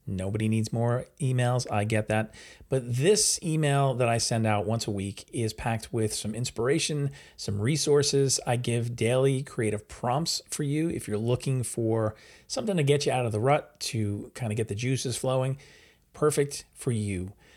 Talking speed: 180 wpm